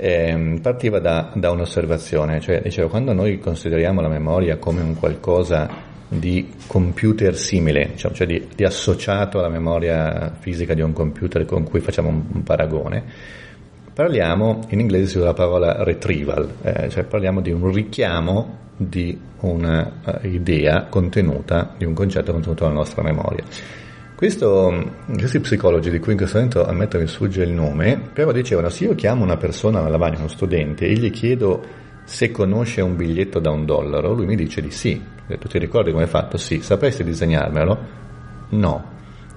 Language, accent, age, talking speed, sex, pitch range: Italian, native, 40-59, 165 wpm, male, 80-100 Hz